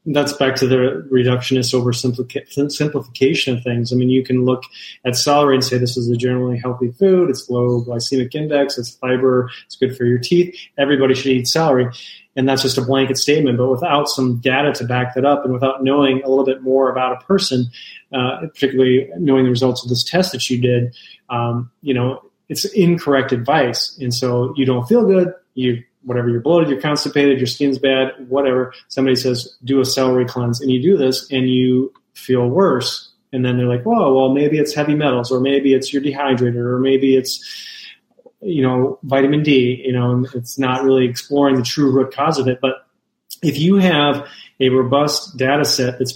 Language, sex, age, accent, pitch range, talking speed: English, male, 30-49, American, 125-145 Hz, 200 wpm